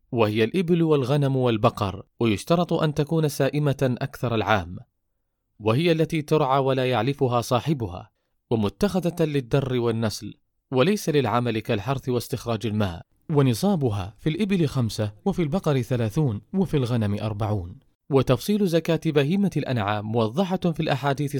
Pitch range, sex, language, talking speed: 115-155 Hz, male, Arabic, 115 wpm